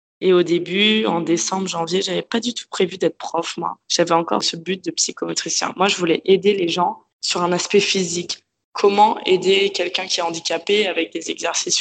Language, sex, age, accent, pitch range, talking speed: French, female, 20-39, French, 165-180 Hz, 200 wpm